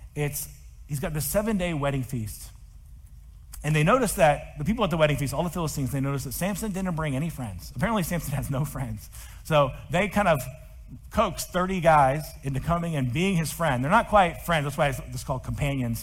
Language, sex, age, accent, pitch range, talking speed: English, male, 40-59, American, 120-170 Hz, 215 wpm